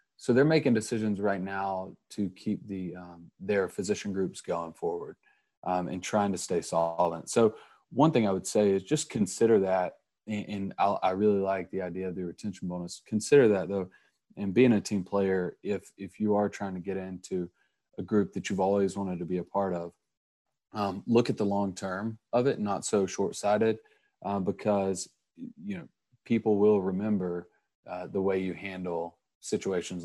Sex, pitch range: male, 90-110 Hz